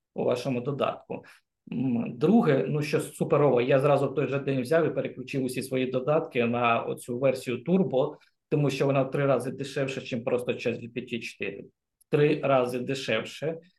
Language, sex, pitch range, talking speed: Ukrainian, male, 125-155 Hz, 160 wpm